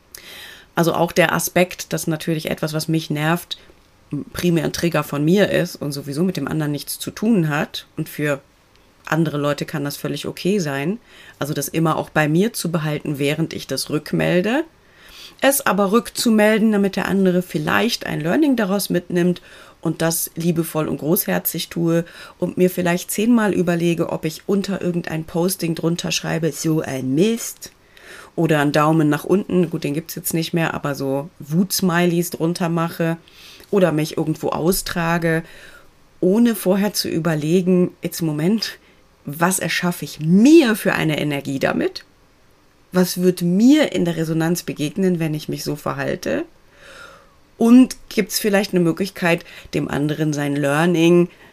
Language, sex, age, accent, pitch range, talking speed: German, female, 30-49, German, 155-185 Hz, 160 wpm